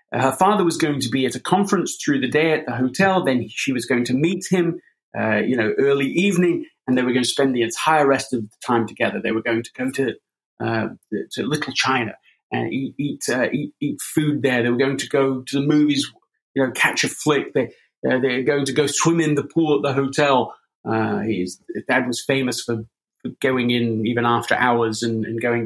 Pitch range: 120-160 Hz